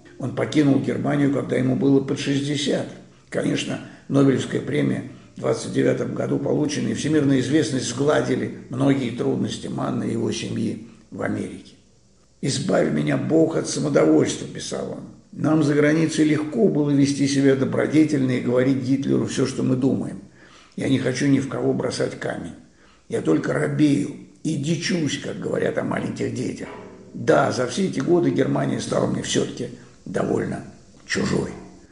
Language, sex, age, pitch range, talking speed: Russian, male, 60-79, 135-155 Hz, 150 wpm